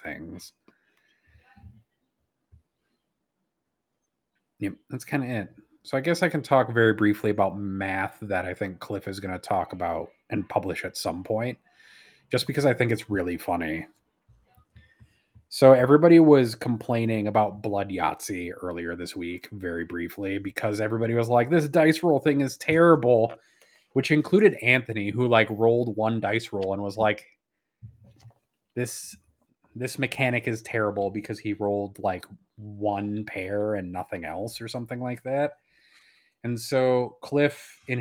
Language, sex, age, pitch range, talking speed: English, male, 30-49, 100-130 Hz, 145 wpm